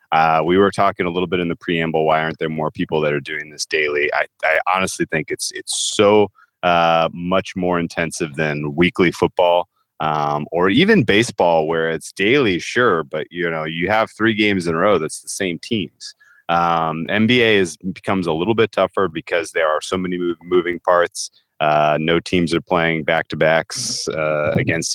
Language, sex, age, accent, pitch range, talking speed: English, male, 30-49, American, 80-100 Hz, 195 wpm